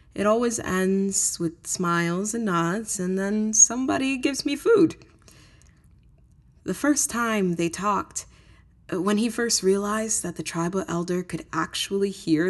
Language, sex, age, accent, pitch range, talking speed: English, female, 20-39, American, 185-265 Hz, 140 wpm